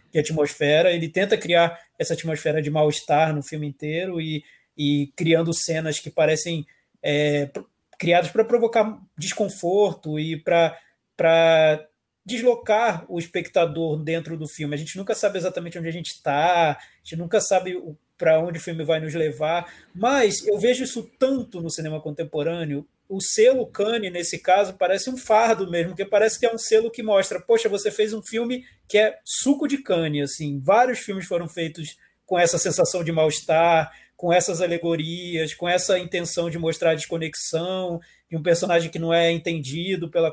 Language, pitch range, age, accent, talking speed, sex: Portuguese, 160-215 Hz, 20-39, Brazilian, 170 wpm, male